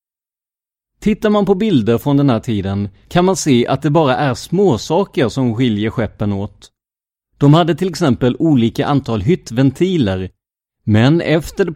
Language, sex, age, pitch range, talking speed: Swedish, male, 30-49, 110-150 Hz, 155 wpm